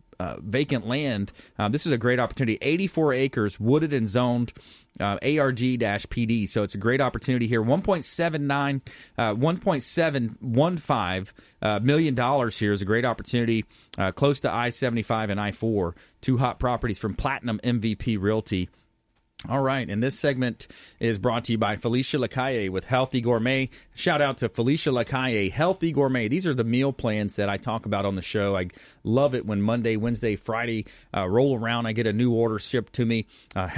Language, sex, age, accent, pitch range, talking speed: English, male, 30-49, American, 110-135 Hz, 175 wpm